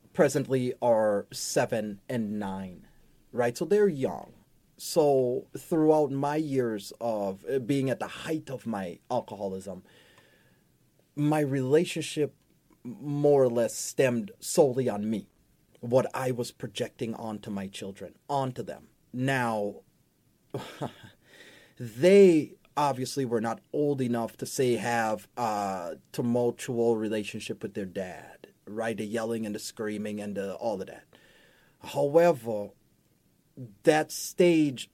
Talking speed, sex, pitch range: 120 wpm, male, 115-170 Hz